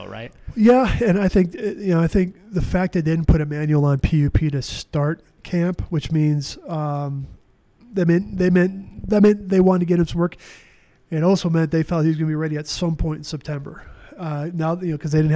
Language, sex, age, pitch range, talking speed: English, male, 20-39, 145-165 Hz, 230 wpm